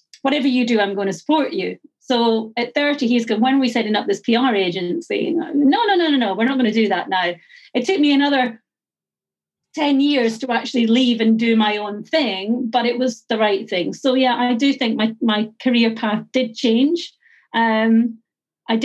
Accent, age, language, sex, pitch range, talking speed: British, 40-59, English, female, 205-250 Hz, 205 wpm